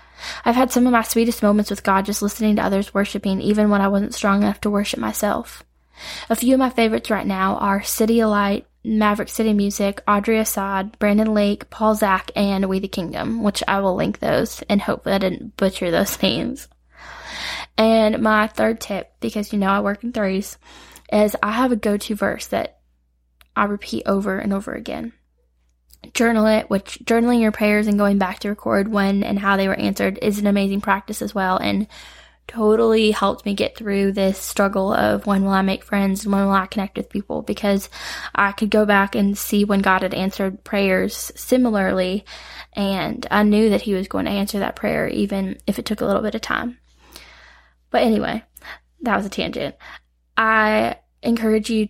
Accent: American